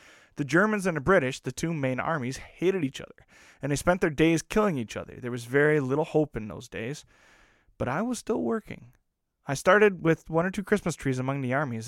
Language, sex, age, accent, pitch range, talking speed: English, male, 20-39, American, 125-175 Hz, 220 wpm